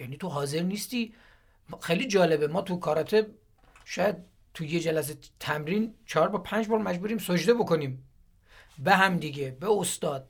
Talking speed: 155 wpm